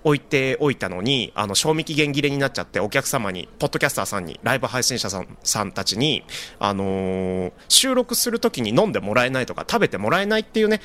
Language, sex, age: Japanese, male, 30-49